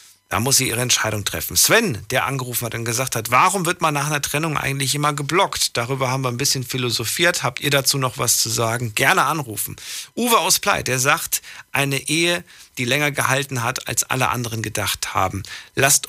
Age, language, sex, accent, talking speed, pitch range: 50-69, German, male, German, 200 wpm, 110-140 Hz